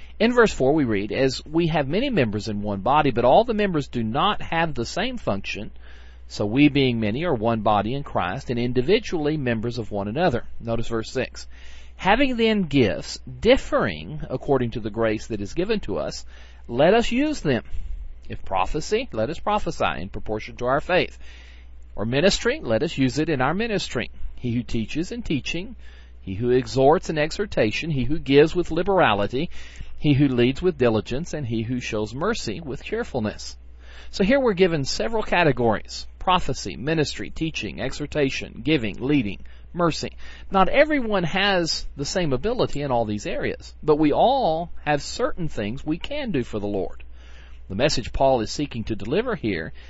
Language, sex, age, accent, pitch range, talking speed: English, male, 40-59, American, 105-160 Hz, 175 wpm